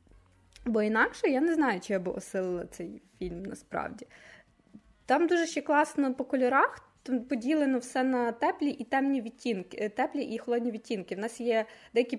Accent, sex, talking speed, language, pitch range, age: native, female, 160 wpm, Ukrainian, 210-265 Hz, 20-39